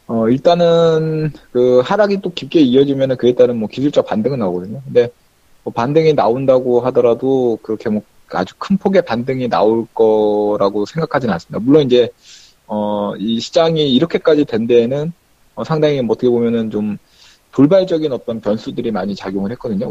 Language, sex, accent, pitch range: Korean, male, native, 115-160 Hz